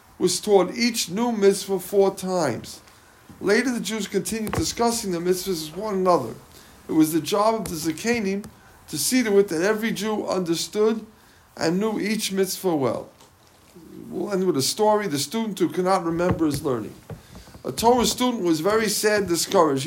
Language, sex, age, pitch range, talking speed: English, male, 50-69, 180-220 Hz, 170 wpm